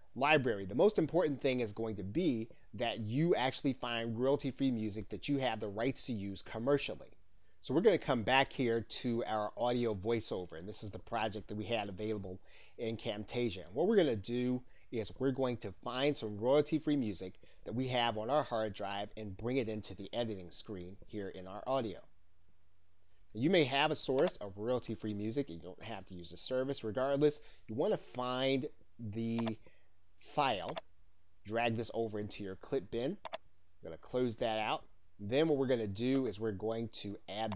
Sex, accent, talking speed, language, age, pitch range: male, American, 195 wpm, English, 30-49, 100-125 Hz